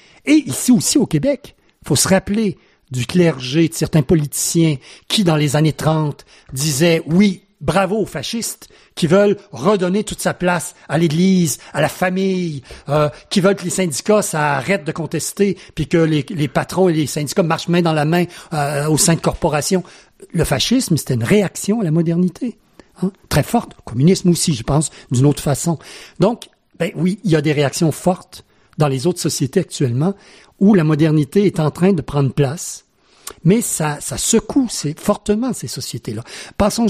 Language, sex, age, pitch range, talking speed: French, male, 60-79, 150-195 Hz, 185 wpm